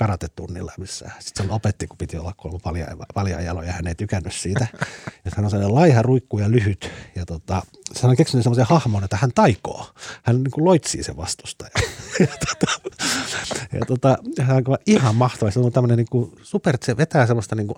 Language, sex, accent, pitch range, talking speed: Finnish, male, native, 90-115 Hz, 220 wpm